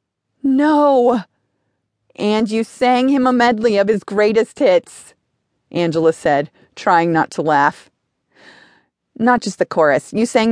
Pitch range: 180-255 Hz